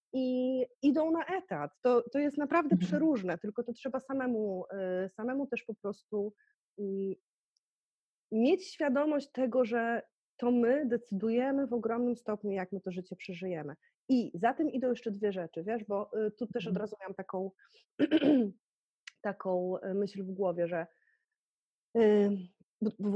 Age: 30-49